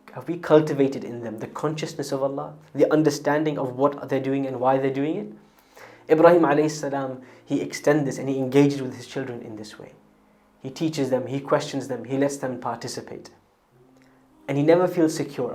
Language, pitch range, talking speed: English, 125-150 Hz, 195 wpm